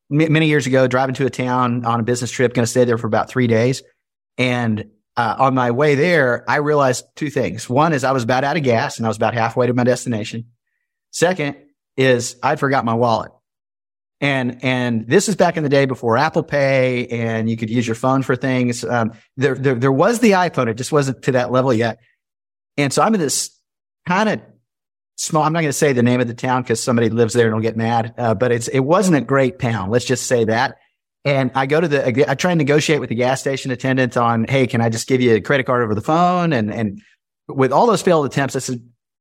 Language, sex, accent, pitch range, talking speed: English, male, American, 120-140 Hz, 245 wpm